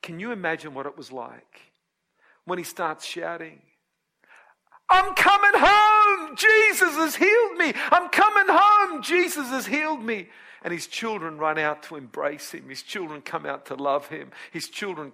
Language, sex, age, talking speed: English, male, 50-69, 165 wpm